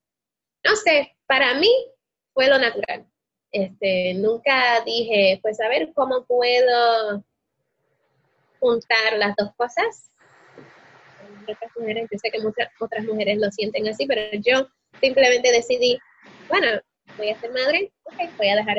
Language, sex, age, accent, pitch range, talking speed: Spanish, female, 20-39, American, 210-270 Hz, 135 wpm